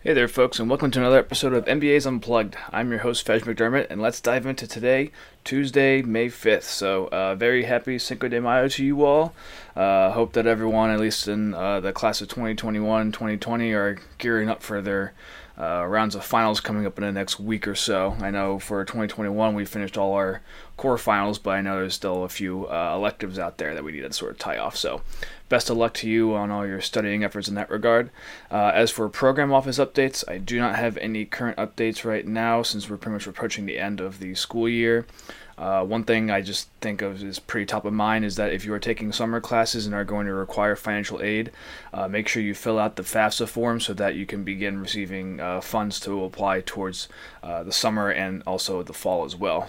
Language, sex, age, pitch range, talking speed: English, male, 20-39, 100-115 Hz, 230 wpm